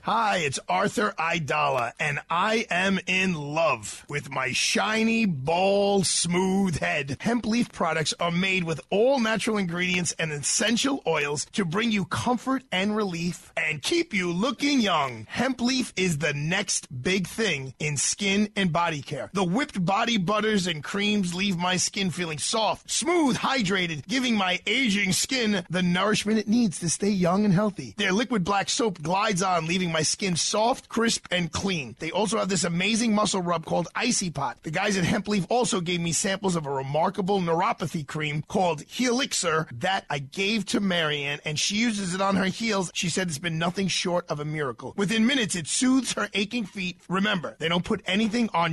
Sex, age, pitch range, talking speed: male, 30-49, 170-215 Hz, 185 wpm